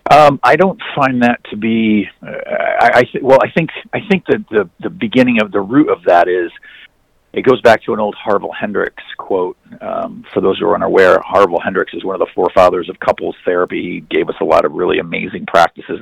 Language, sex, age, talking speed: English, male, 50-69, 225 wpm